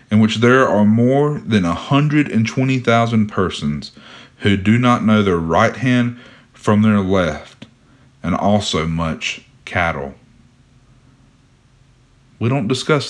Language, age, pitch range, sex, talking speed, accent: English, 40-59, 105-130 Hz, male, 115 wpm, American